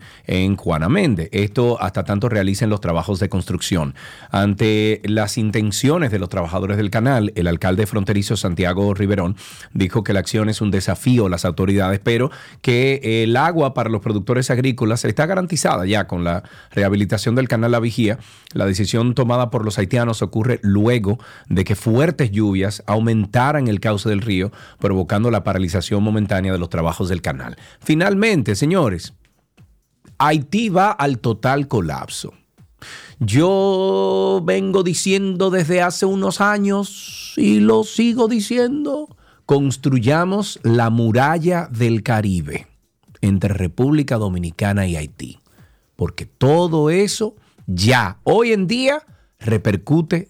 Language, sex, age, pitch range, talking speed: Spanish, male, 40-59, 100-140 Hz, 135 wpm